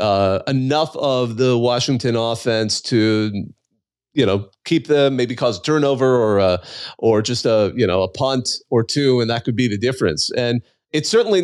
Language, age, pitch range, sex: English, 30-49, 115-155 Hz, male